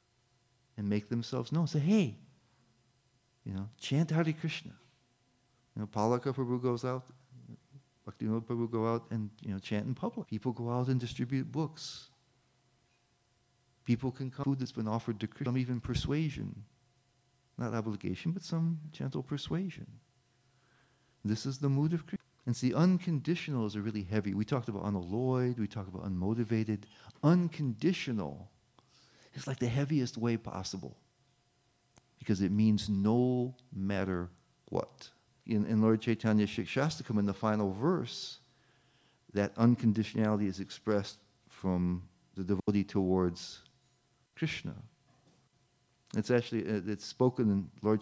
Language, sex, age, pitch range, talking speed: English, male, 40-59, 105-130 Hz, 135 wpm